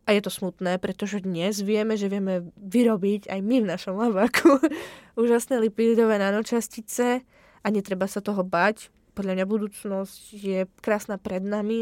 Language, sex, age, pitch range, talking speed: Czech, female, 20-39, 185-220 Hz, 150 wpm